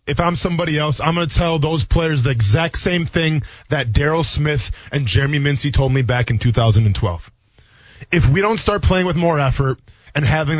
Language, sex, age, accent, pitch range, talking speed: English, male, 20-39, American, 130-195 Hz, 200 wpm